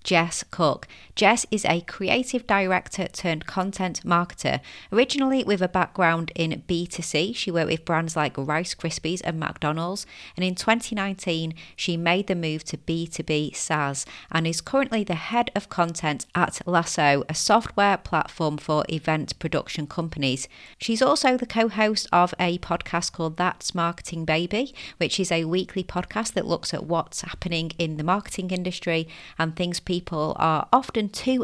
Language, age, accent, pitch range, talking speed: English, 30-49, British, 155-190 Hz, 160 wpm